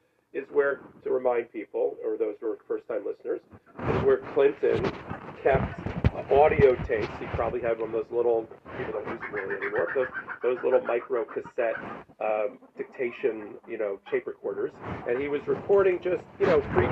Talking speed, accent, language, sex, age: 175 wpm, American, English, male, 40-59